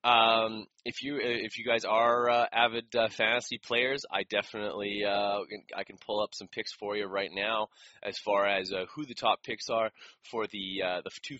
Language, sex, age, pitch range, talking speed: English, male, 20-39, 100-115 Hz, 205 wpm